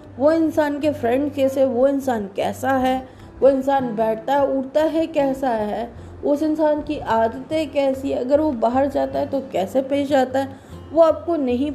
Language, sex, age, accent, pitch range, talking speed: Hindi, female, 20-39, native, 245-300 Hz, 185 wpm